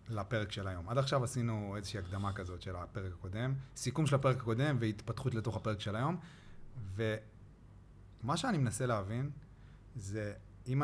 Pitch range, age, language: 100-130 Hz, 30-49, Hebrew